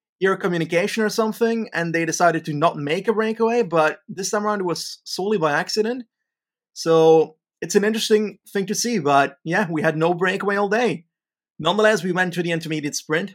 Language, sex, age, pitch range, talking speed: English, male, 30-49, 145-185 Hz, 195 wpm